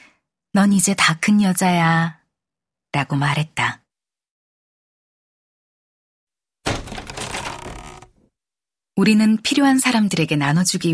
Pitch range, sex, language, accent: 145-190 Hz, female, Korean, native